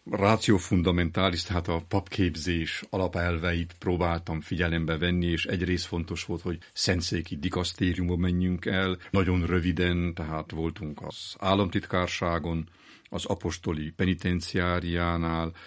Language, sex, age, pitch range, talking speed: Hungarian, male, 50-69, 85-90 Hz, 105 wpm